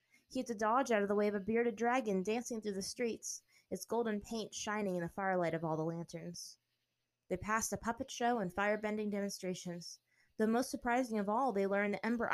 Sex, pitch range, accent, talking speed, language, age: female, 170-220 Hz, American, 215 wpm, English, 20-39